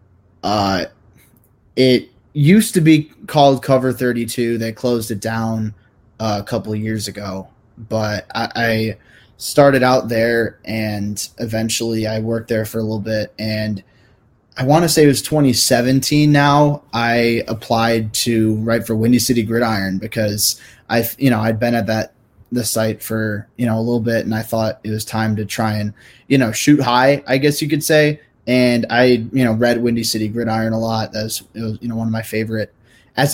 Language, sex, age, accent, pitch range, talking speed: English, male, 20-39, American, 110-125 Hz, 190 wpm